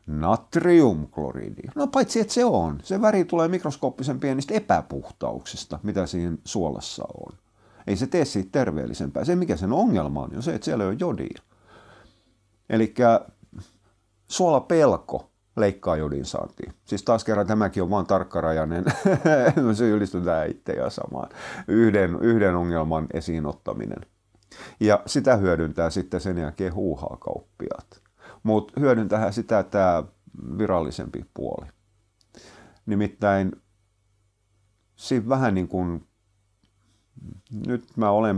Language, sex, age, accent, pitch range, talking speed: Finnish, male, 50-69, native, 85-110 Hz, 120 wpm